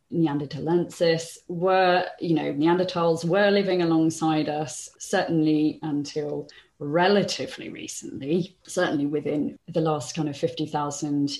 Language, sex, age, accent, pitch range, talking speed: English, female, 30-49, British, 155-185 Hz, 105 wpm